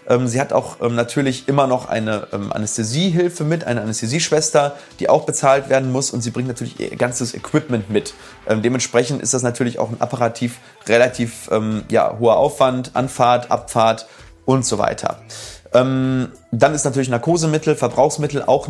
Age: 30-49